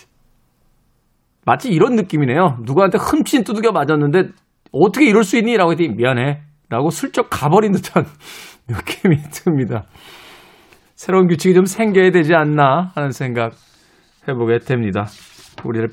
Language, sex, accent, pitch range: Korean, male, native, 140-190 Hz